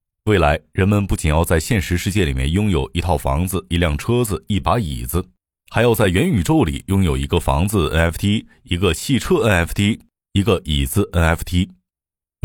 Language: Chinese